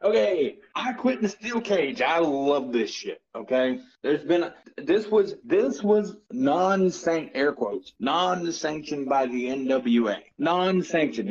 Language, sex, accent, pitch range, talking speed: English, male, American, 145-200 Hz, 155 wpm